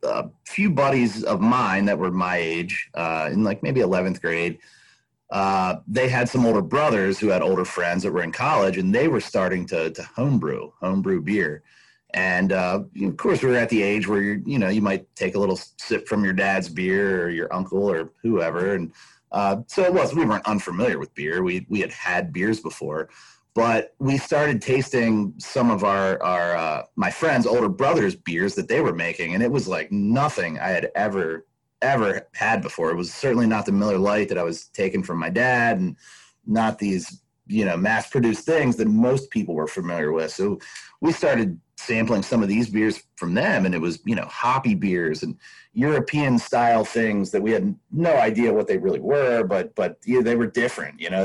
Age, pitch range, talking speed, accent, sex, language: 30-49, 95-120 Hz, 210 wpm, American, male, English